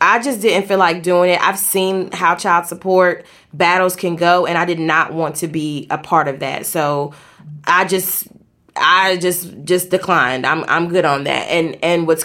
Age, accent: 20-39, American